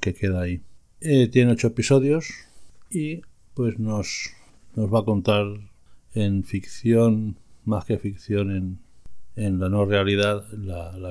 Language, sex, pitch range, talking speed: Spanish, male, 95-115 Hz, 140 wpm